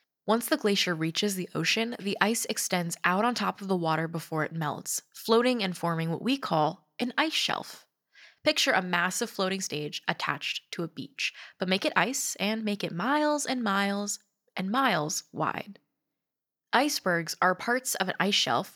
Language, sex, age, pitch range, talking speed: English, female, 10-29, 165-215 Hz, 180 wpm